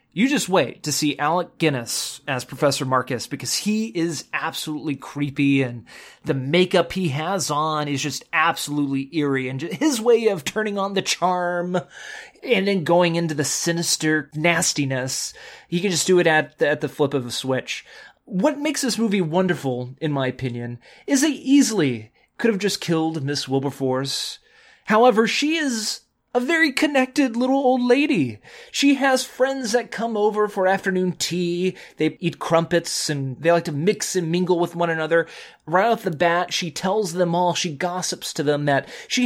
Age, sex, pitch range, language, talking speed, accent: 30-49, male, 150-220 Hz, English, 175 wpm, American